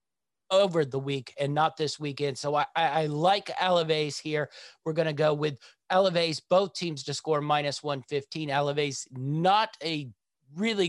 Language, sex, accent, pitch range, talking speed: English, male, American, 140-165 Hz, 160 wpm